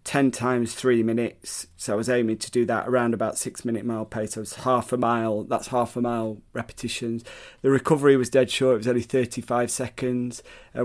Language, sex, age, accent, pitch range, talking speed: English, male, 30-49, British, 115-130 Hz, 210 wpm